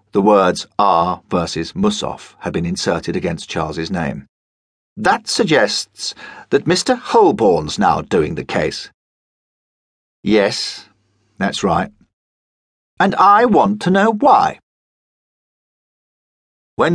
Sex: male